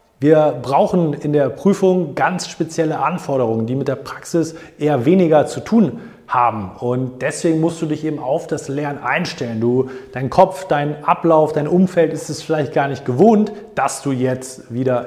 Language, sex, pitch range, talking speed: German, male, 130-160 Hz, 175 wpm